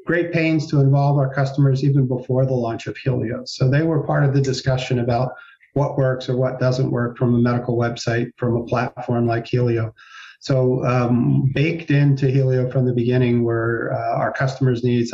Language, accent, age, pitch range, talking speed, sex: English, American, 50-69, 120-140 Hz, 190 wpm, male